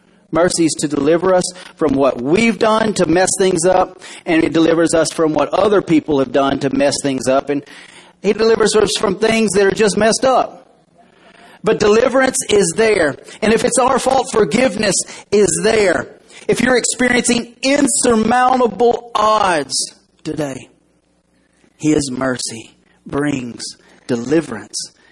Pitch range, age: 130-210 Hz, 40-59